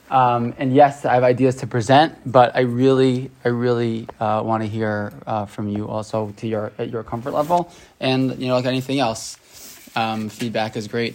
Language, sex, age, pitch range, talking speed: English, male, 20-39, 115-145 Hz, 195 wpm